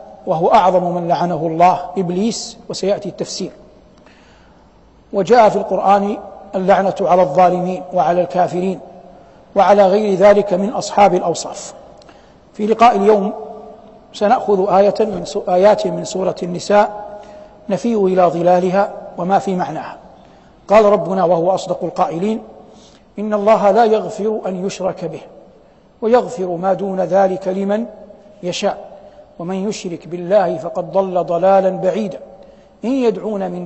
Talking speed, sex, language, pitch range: 120 wpm, male, Arabic, 180-210 Hz